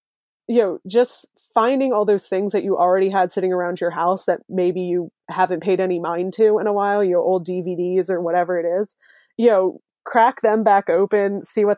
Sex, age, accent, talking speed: female, 20-39, American, 200 wpm